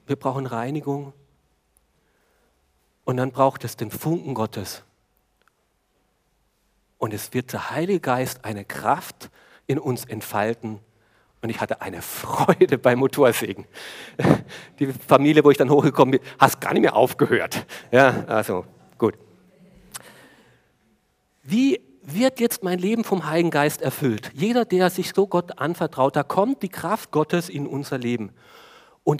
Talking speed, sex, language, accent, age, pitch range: 140 wpm, male, German, German, 50-69, 125-180 Hz